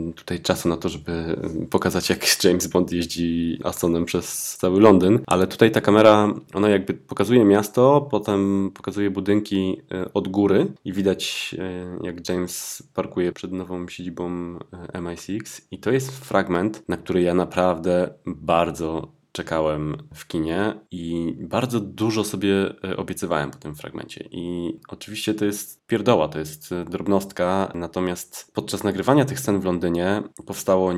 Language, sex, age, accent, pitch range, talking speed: Polish, male, 20-39, native, 80-95 Hz, 140 wpm